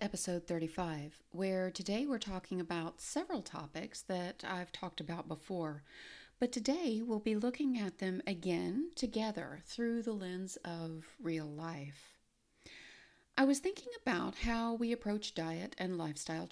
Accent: American